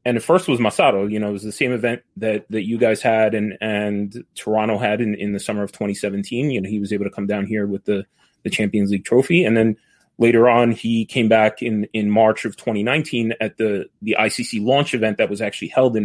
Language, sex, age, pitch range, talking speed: Italian, male, 30-49, 105-120 Hz, 245 wpm